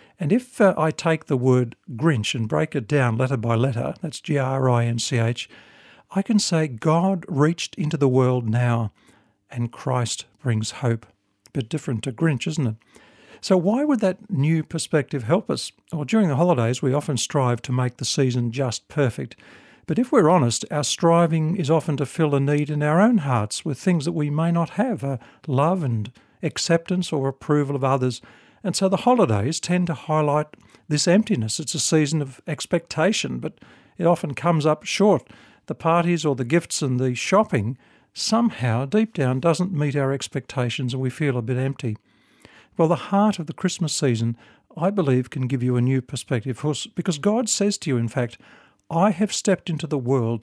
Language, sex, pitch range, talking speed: English, male, 125-170 Hz, 190 wpm